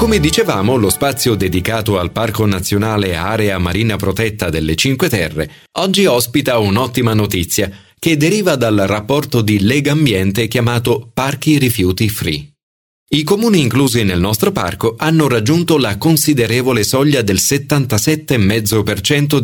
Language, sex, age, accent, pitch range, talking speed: Italian, male, 40-59, native, 100-140 Hz, 130 wpm